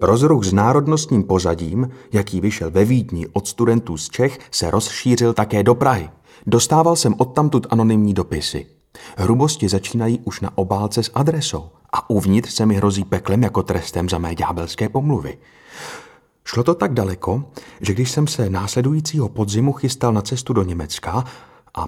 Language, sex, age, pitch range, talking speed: Czech, male, 30-49, 100-130 Hz, 155 wpm